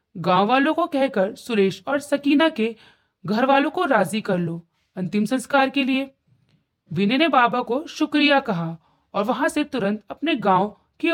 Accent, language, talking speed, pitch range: native, Hindi, 165 wpm, 190-280 Hz